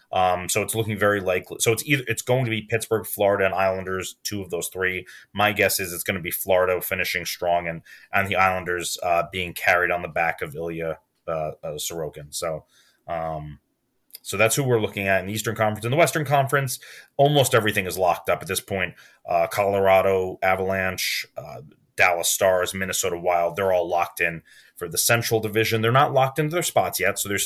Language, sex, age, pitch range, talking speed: English, male, 30-49, 95-115 Hz, 210 wpm